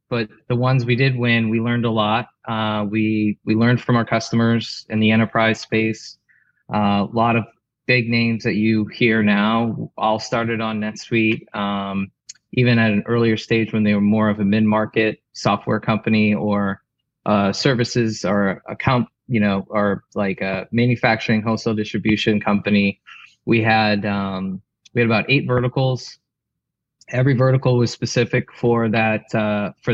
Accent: American